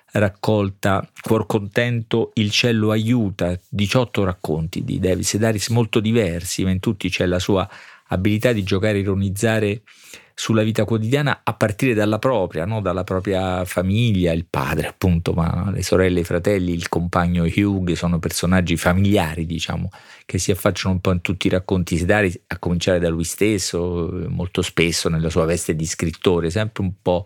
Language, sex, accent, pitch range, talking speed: Italian, male, native, 85-105 Hz, 165 wpm